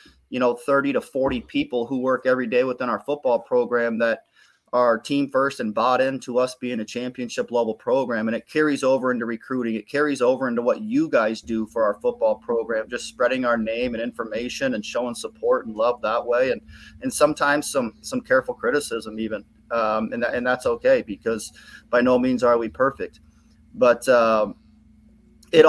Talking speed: 190 wpm